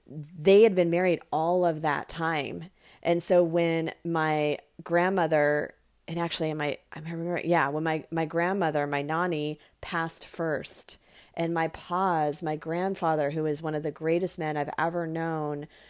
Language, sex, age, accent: English, female, 30-49, American